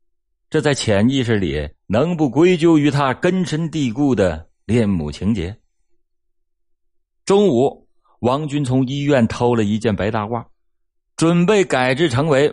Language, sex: Chinese, male